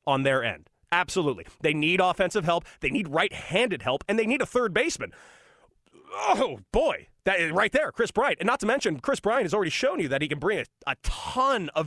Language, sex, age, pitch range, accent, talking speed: English, male, 30-49, 135-195 Hz, American, 215 wpm